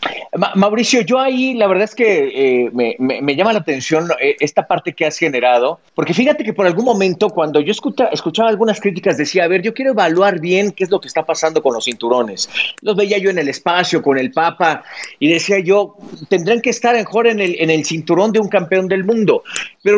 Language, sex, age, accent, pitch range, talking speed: Spanish, male, 40-59, Mexican, 155-210 Hz, 220 wpm